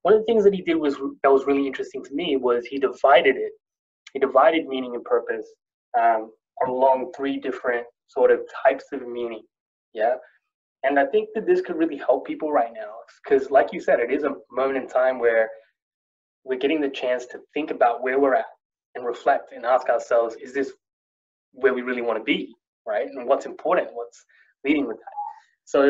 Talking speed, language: 200 wpm, English